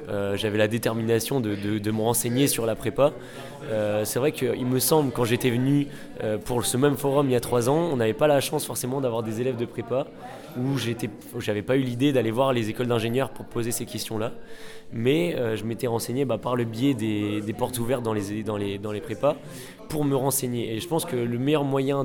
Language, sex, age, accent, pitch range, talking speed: French, male, 20-39, French, 110-130 Hz, 235 wpm